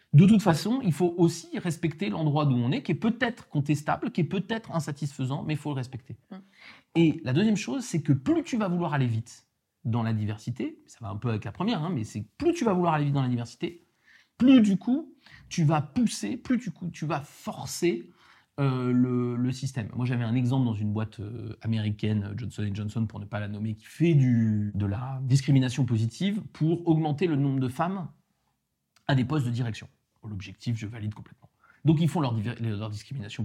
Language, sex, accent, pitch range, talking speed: French, male, French, 115-170 Hz, 210 wpm